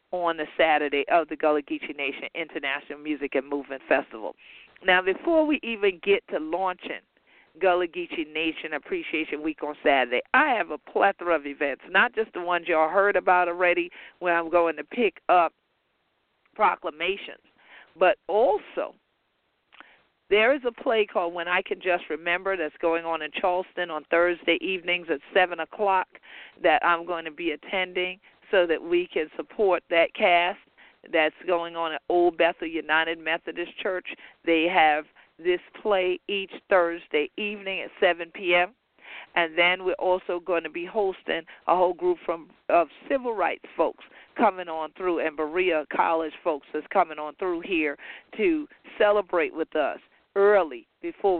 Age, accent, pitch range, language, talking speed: 50-69, American, 160-200 Hz, English, 160 wpm